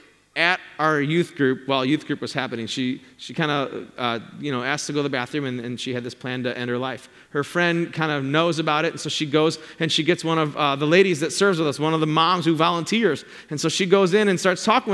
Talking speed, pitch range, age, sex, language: 280 wpm, 165-220 Hz, 30-49, male, English